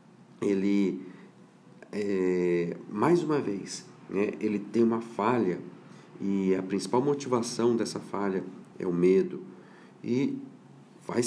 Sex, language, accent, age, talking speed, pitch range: male, Portuguese, Brazilian, 40-59, 105 wpm, 90-110 Hz